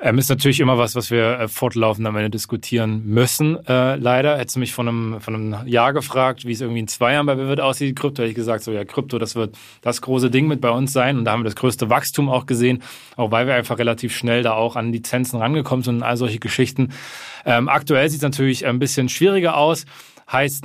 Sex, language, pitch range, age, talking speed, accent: male, German, 120-140 Hz, 20-39, 245 wpm, German